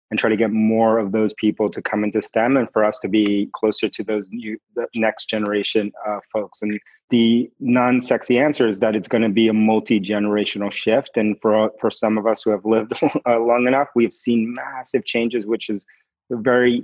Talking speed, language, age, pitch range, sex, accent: 205 wpm, English, 30-49, 105-110 Hz, male, American